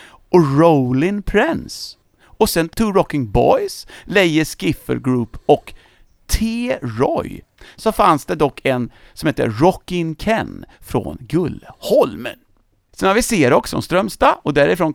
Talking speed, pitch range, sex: 135 wpm, 120-195 Hz, male